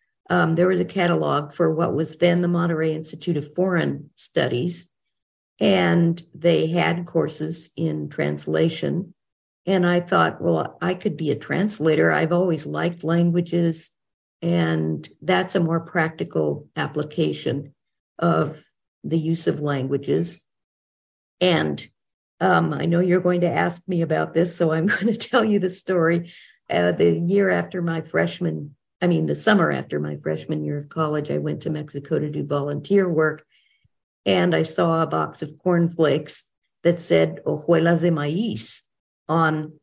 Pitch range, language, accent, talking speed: 145-175 Hz, English, American, 150 wpm